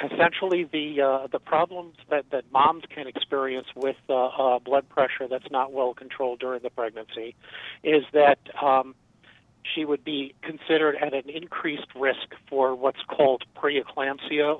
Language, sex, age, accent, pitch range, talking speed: English, male, 50-69, American, 130-150 Hz, 150 wpm